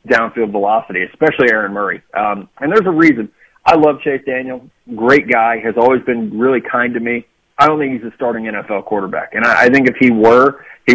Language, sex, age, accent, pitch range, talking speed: English, male, 30-49, American, 115-140 Hz, 215 wpm